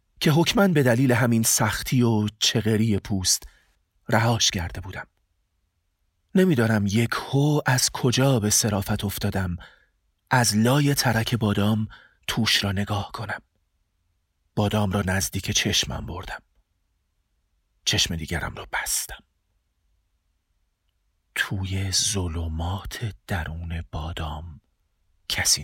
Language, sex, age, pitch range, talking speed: Persian, male, 40-59, 85-125 Hz, 100 wpm